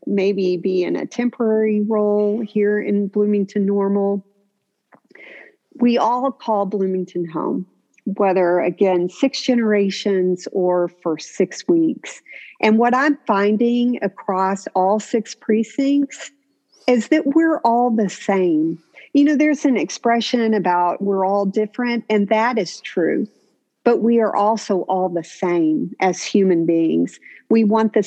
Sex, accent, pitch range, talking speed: female, American, 185-240 Hz, 135 wpm